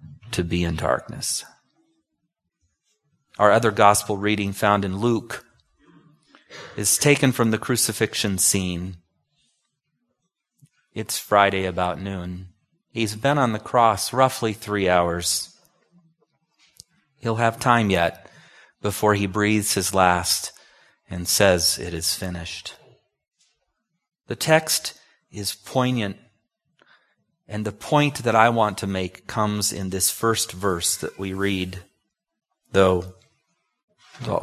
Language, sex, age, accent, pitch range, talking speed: English, male, 30-49, American, 90-125 Hz, 115 wpm